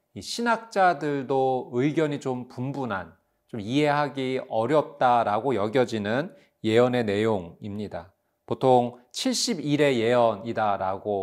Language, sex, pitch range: Korean, male, 115-155 Hz